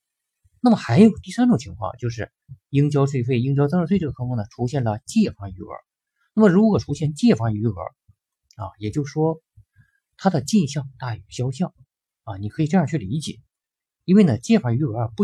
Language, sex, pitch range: Chinese, male, 110-165 Hz